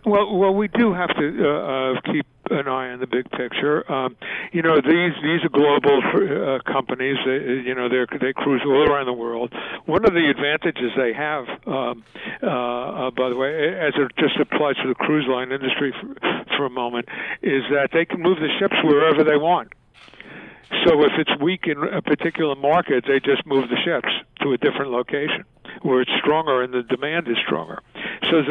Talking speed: 205 wpm